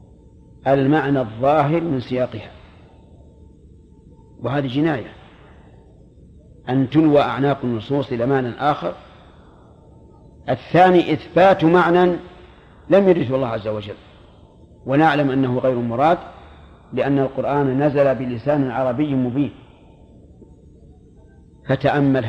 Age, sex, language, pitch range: 50-69, male, Arabic, 120-155 Hz